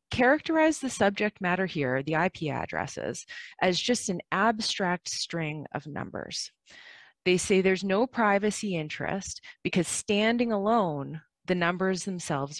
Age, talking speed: 20-39, 130 wpm